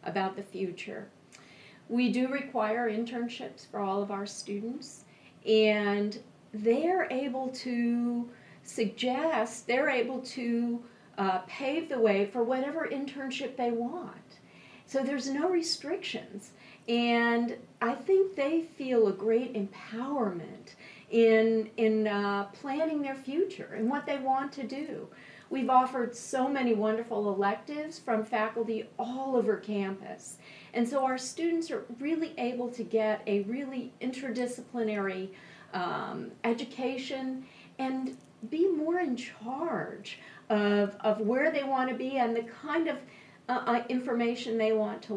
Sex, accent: female, American